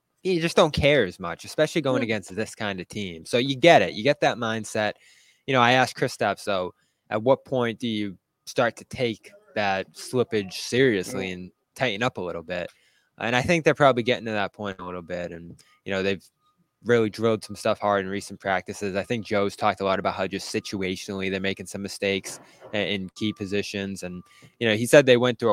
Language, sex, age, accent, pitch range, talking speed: English, male, 20-39, American, 95-125 Hz, 220 wpm